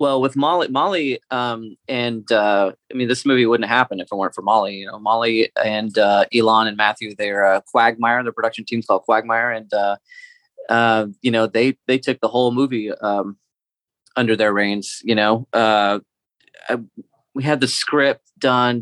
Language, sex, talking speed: English, male, 190 wpm